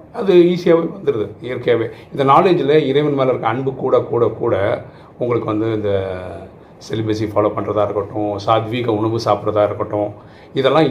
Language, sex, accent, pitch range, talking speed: Tamil, male, native, 110-160 Hz, 140 wpm